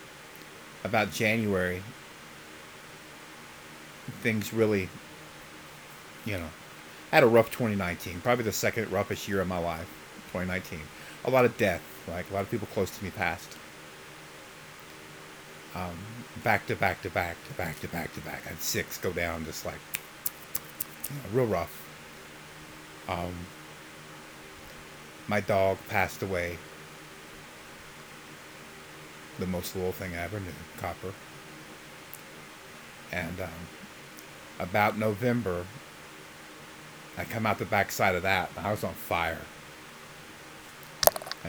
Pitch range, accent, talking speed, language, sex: 75-95 Hz, American, 120 wpm, English, male